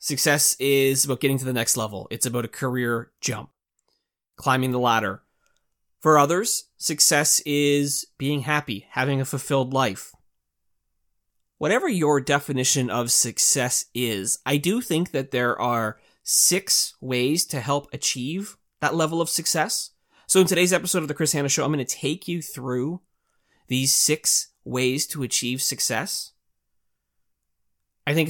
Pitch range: 120-155 Hz